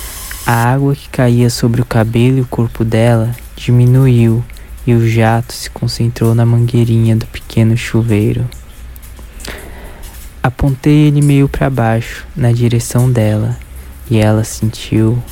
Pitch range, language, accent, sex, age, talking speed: 100-120 Hz, Portuguese, Brazilian, male, 20-39, 130 wpm